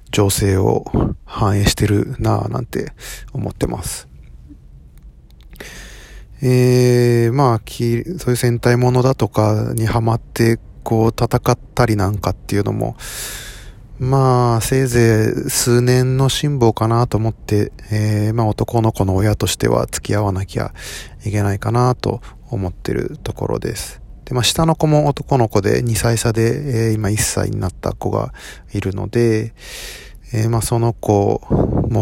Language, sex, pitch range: Japanese, male, 105-125 Hz